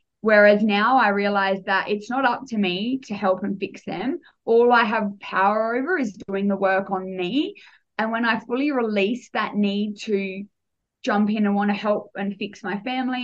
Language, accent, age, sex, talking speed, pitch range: English, Australian, 20-39, female, 200 wpm, 200-235 Hz